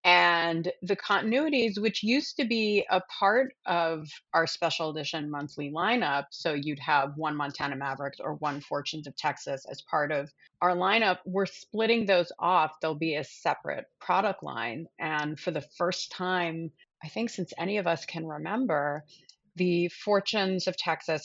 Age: 30-49